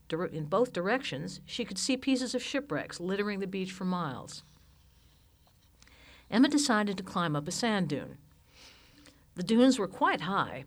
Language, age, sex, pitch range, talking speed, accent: English, 60-79, female, 155-215 Hz, 150 wpm, American